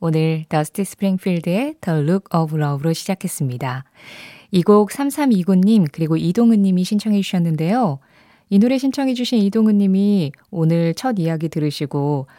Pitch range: 155-210 Hz